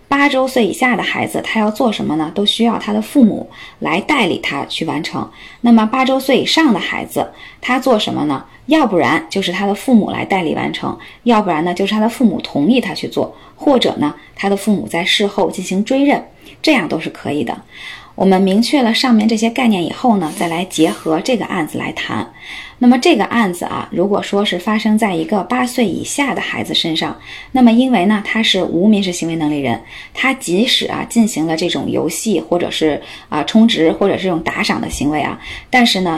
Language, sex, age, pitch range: Chinese, female, 20-39, 180-245 Hz